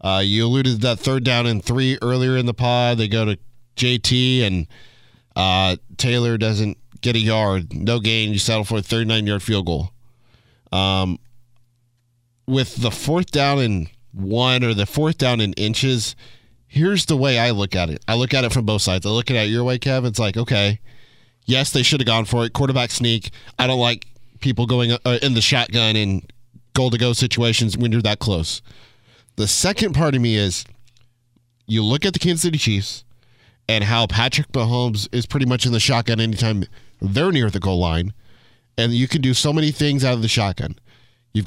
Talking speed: 195 wpm